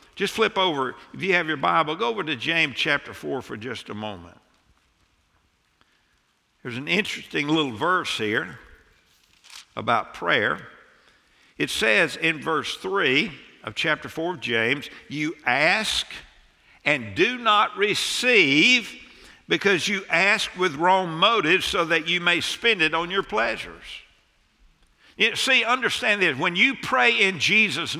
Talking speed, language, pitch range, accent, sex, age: 140 wpm, English, 155-225 Hz, American, male, 60-79